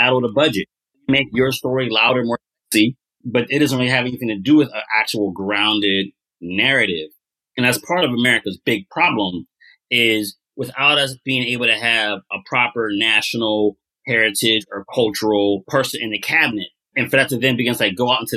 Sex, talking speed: male, 185 wpm